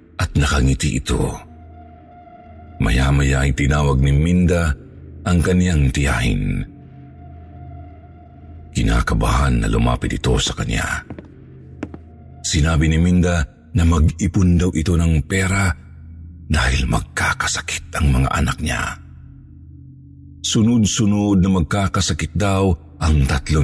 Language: Filipino